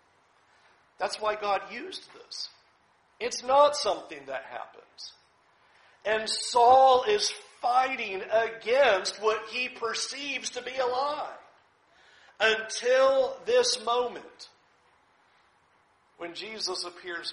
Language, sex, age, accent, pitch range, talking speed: English, male, 50-69, American, 190-275 Hz, 95 wpm